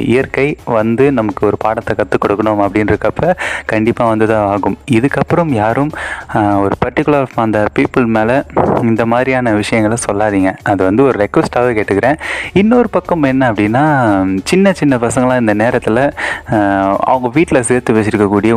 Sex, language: male, Tamil